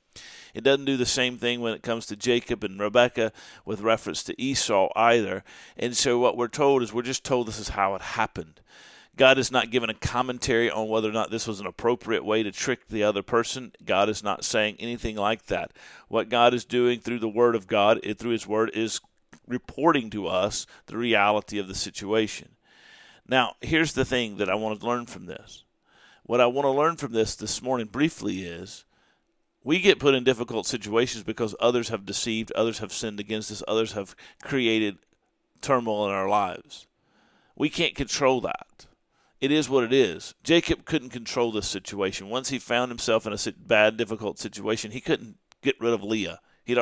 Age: 50-69